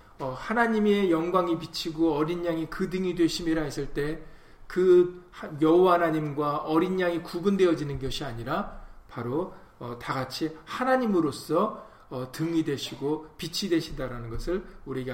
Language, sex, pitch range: Korean, male, 135-175 Hz